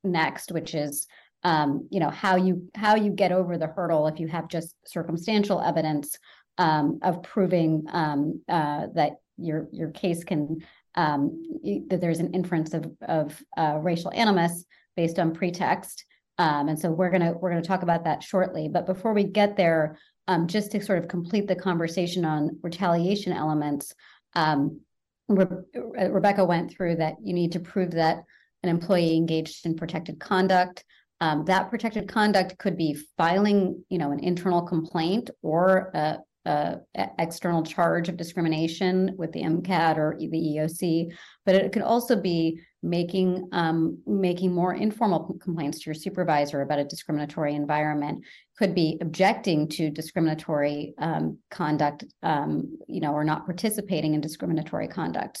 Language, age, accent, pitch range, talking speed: English, 30-49, American, 155-185 Hz, 155 wpm